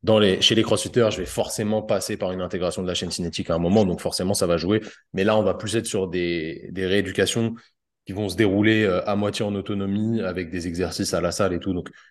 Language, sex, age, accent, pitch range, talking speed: French, male, 30-49, French, 95-115 Hz, 255 wpm